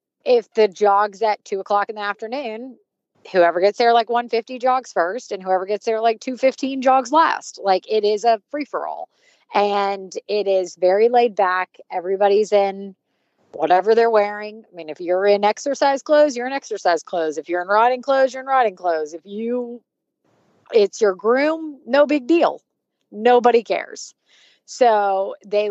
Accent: American